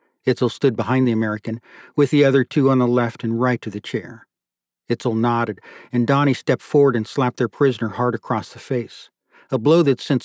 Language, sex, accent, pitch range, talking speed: English, male, American, 115-130 Hz, 205 wpm